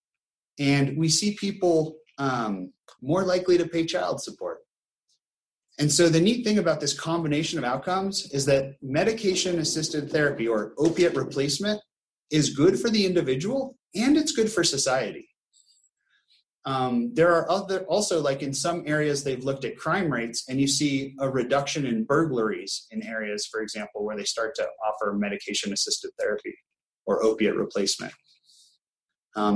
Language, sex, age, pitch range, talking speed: English, male, 30-49, 125-175 Hz, 155 wpm